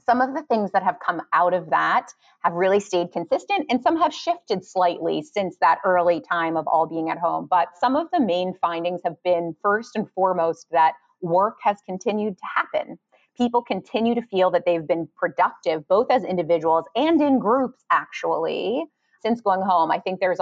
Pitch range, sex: 170-230 Hz, female